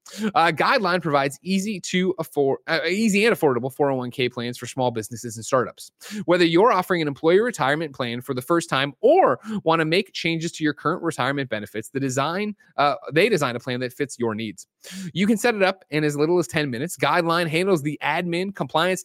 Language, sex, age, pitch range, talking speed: English, male, 20-39, 130-185 Hz, 205 wpm